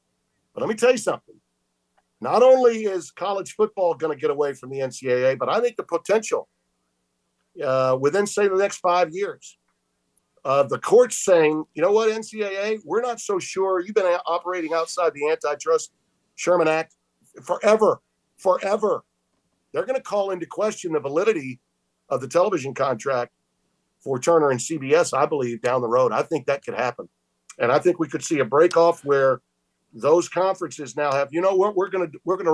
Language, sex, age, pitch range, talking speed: English, male, 50-69, 130-195 Hz, 185 wpm